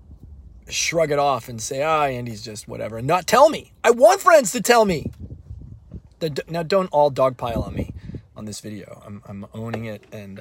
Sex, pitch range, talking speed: male, 105-170 Hz, 195 wpm